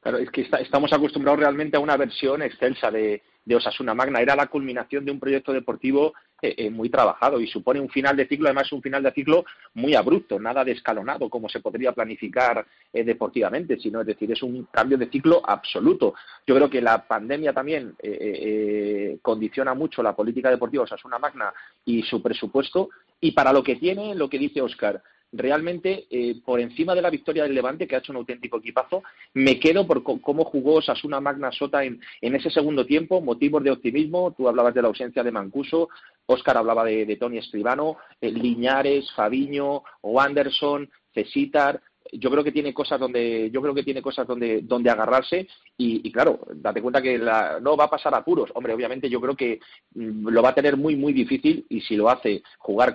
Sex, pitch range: male, 120-150 Hz